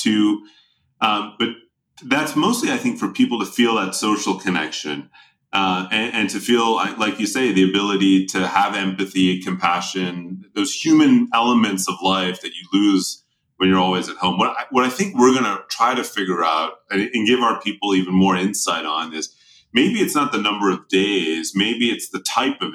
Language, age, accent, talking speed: English, 30-49, American, 200 wpm